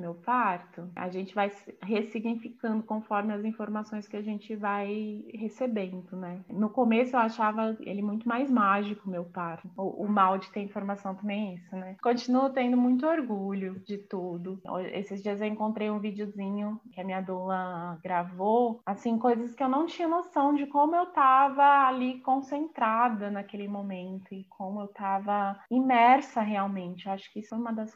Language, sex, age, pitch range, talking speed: Portuguese, female, 20-39, 195-240 Hz, 175 wpm